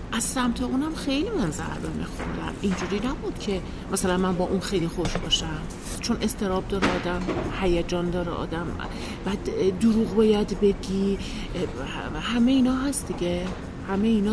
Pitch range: 175-235 Hz